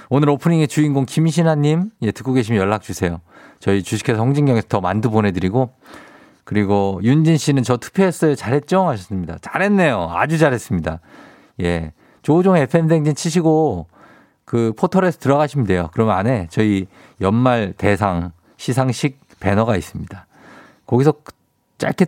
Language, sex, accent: Korean, male, native